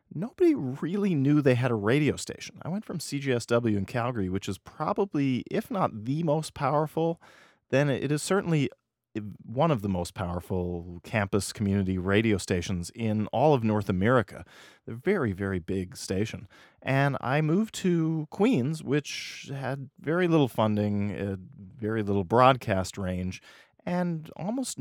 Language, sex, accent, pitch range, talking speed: English, male, American, 100-145 Hz, 150 wpm